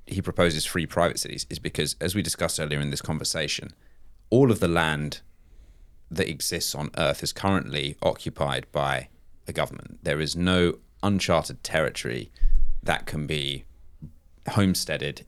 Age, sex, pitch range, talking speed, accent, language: 30-49, male, 70-90 Hz, 145 wpm, British, Russian